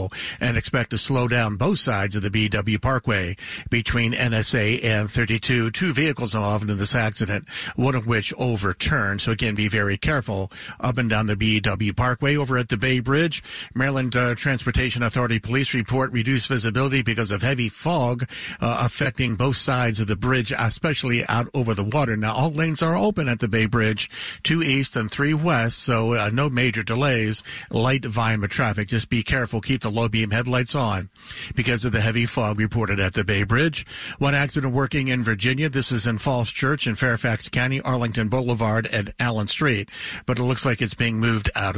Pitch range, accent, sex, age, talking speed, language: 110-135 Hz, American, male, 50-69, 190 wpm, English